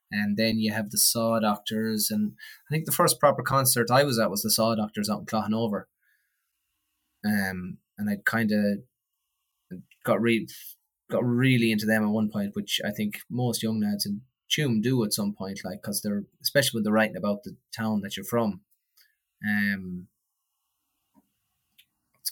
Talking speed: 175 wpm